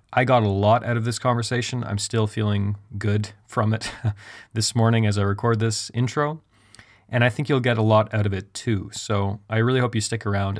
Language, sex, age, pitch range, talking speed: English, male, 30-49, 105-120 Hz, 220 wpm